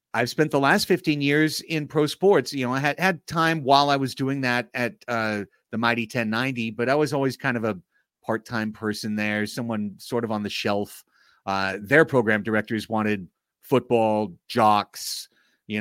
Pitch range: 110-145 Hz